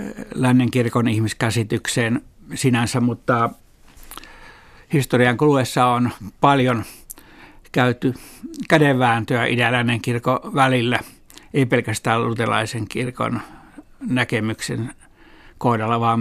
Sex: male